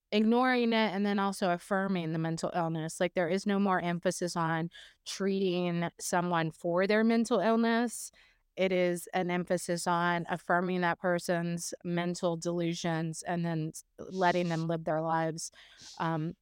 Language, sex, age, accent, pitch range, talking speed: English, female, 20-39, American, 160-180 Hz, 145 wpm